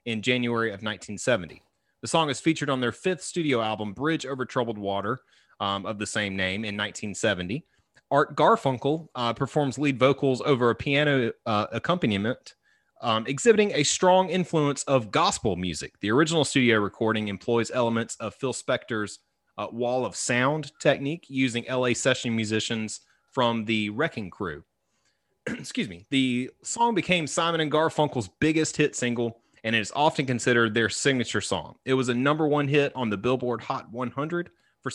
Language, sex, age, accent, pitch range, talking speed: English, male, 30-49, American, 110-150 Hz, 165 wpm